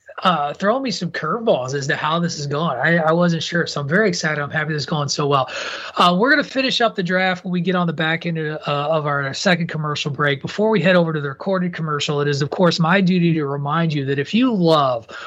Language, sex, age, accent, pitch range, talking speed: English, male, 30-49, American, 145-185 Hz, 265 wpm